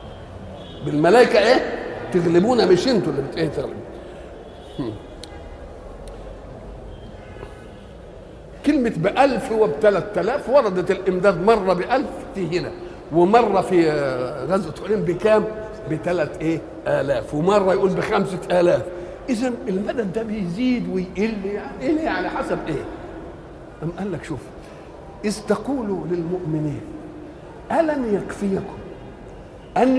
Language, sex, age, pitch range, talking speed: Arabic, male, 50-69, 175-230 Hz, 95 wpm